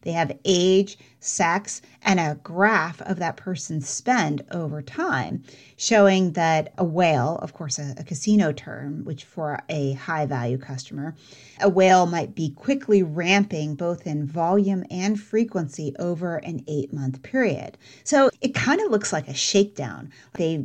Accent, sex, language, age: American, female, English, 30-49